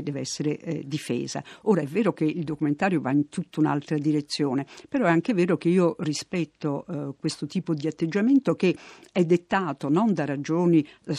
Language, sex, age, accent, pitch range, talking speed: Italian, female, 50-69, native, 150-180 Hz, 180 wpm